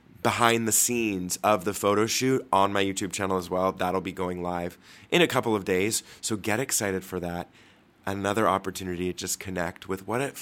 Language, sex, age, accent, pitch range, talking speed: English, male, 20-39, American, 90-110 Hz, 200 wpm